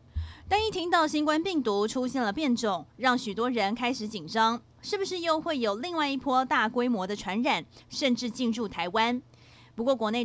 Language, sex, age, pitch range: Chinese, female, 20-39, 215-275 Hz